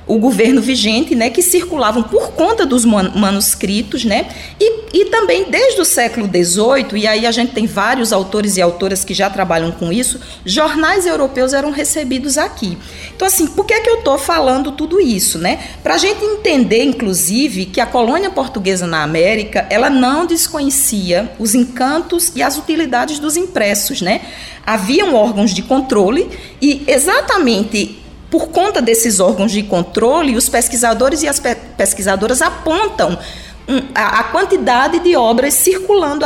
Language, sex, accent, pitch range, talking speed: Portuguese, female, Brazilian, 205-310 Hz, 160 wpm